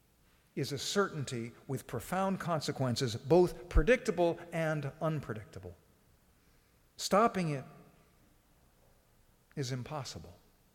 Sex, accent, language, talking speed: male, American, English, 80 wpm